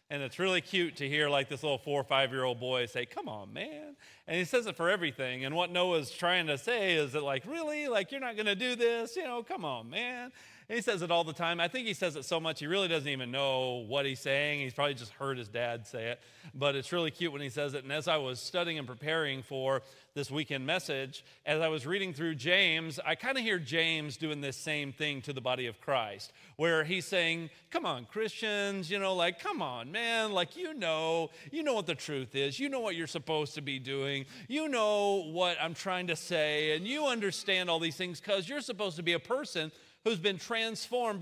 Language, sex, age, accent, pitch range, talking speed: English, male, 40-59, American, 150-215 Hz, 245 wpm